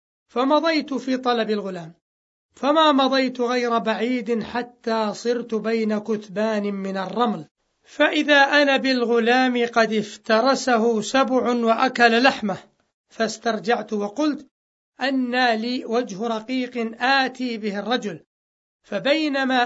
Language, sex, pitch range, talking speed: Arabic, male, 220-260 Hz, 100 wpm